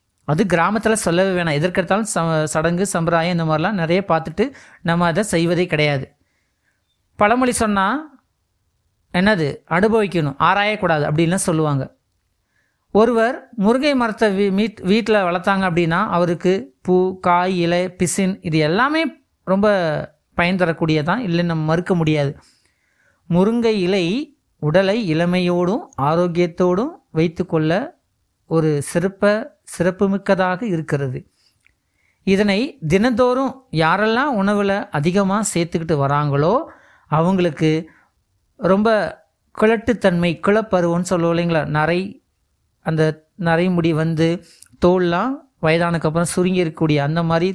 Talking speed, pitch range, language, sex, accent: 95 wpm, 160-200 Hz, Tamil, male, native